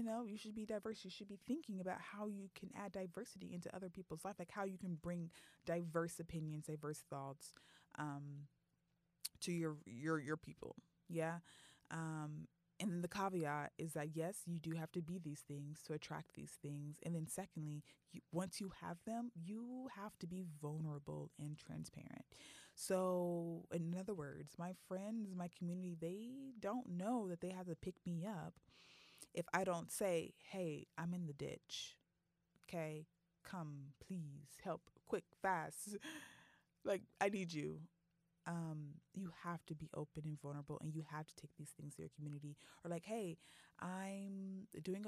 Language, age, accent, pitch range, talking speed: English, 20-39, American, 155-190 Hz, 170 wpm